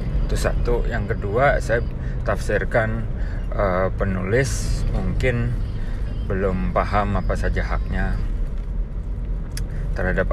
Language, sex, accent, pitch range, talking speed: Indonesian, male, native, 90-105 Hz, 85 wpm